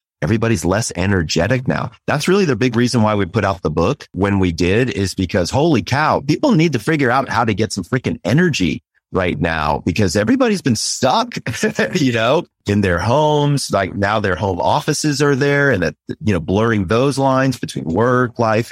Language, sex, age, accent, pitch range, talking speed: English, male, 30-49, American, 95-125 Hz, 195 wpm